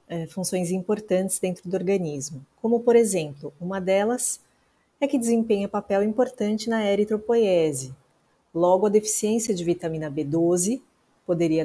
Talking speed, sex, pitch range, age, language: 125 wpm, female, 175-235 Hz, 30-49, Portuguese